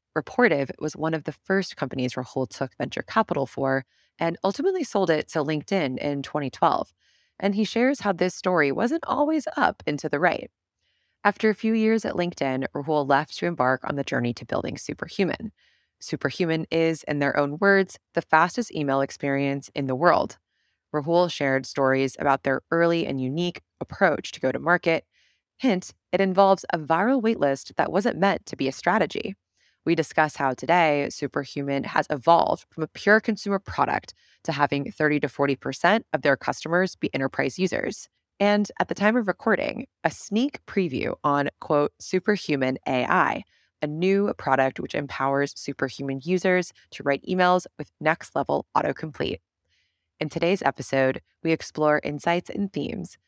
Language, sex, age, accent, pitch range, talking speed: English, female, 20-39, American, 140-190 Hz, 165 wpm